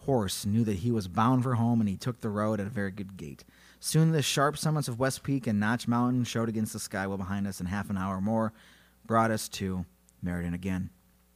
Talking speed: 240 wpm